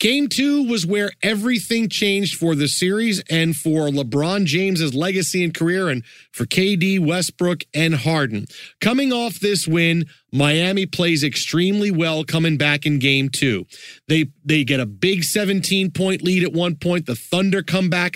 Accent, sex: American, male